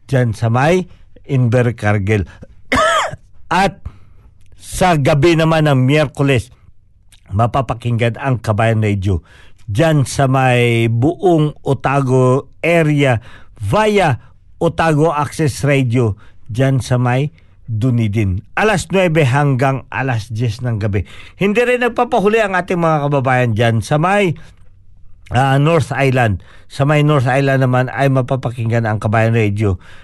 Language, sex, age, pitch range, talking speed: Filipino, male, 50-69, 110-150 Hz, 115 wpm